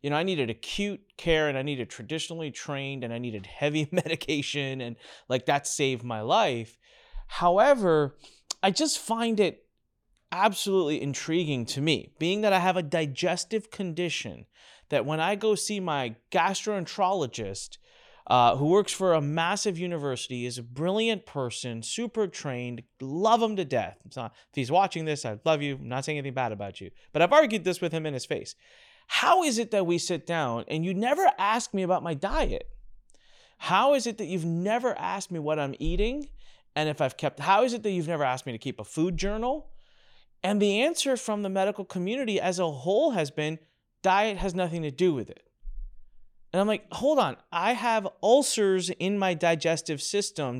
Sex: male